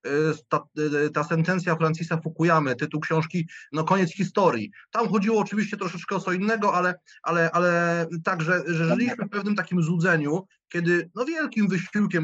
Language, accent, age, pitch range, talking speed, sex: Polish, native, 30-49, 165-210 Hz, 150 wpm, male